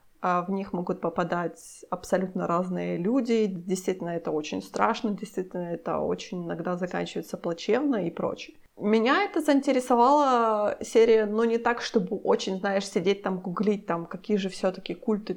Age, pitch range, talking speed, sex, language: 20-39, 185-230 Hz, 150 wpm, female, Ukrainian